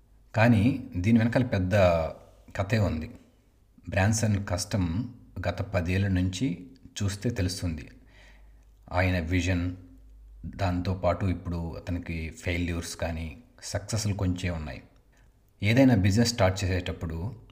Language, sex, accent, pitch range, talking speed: Telugu, male, native, 85-105 Hz, 95 wpm